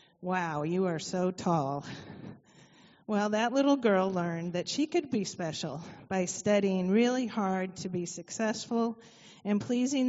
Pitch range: 180-225 Hz